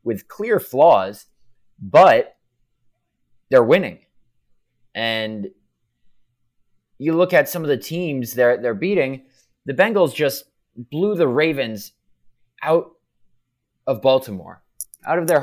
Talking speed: 115 wpm